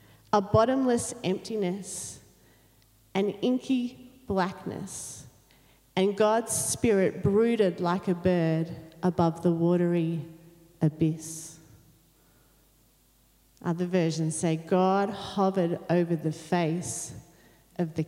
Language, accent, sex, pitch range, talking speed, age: English, Australian, female, 150-190 Hz, 90 wpm, 40-59